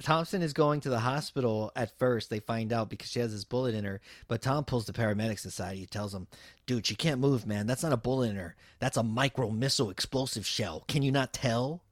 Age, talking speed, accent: 30-49, 235 wpm, American